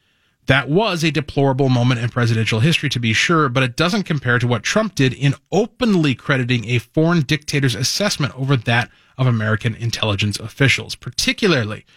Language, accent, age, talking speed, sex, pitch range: English, American, 30-49, 165 wpm, male, 110-155 Hz